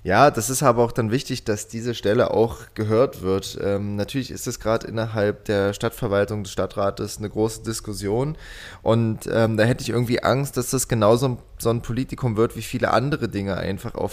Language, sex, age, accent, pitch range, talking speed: German, male, 20-39, German, 105-120 Hz, 195 wpm